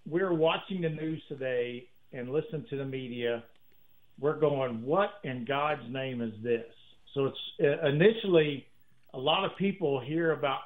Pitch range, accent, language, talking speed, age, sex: 125-165 Hz, American, English, 160 wpm, 50-69, male